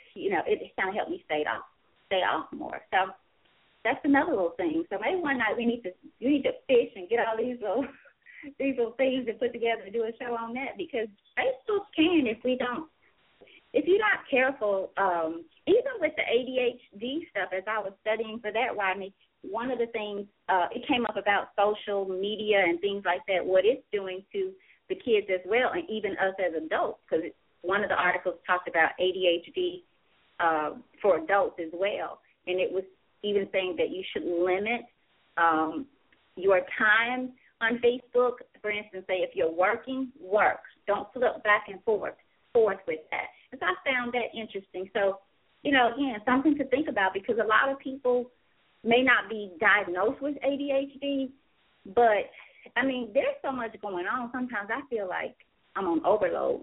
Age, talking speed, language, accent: 30-49, 190 wpm, English, American